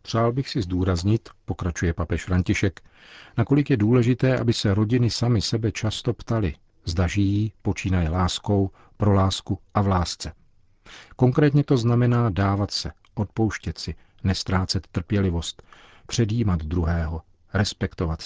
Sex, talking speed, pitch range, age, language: male, 125 wpm, 90-105 Hz, 50-69, Czech